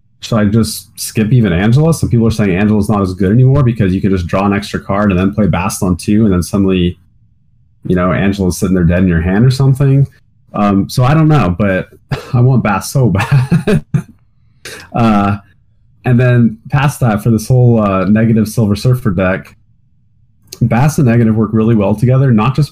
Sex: male